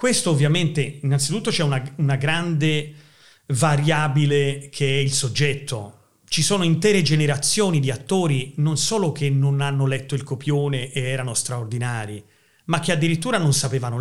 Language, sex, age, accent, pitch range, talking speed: Italian, male, 40-59, native, 135-165 Hz, 145 wpm